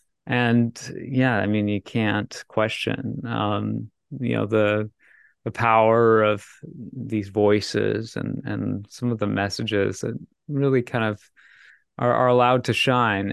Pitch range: 105-125 Hz